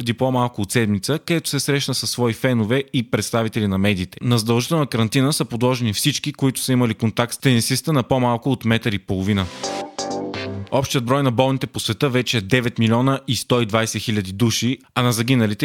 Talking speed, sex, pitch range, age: 180 wpm, male, 110-130 Hz, 30-49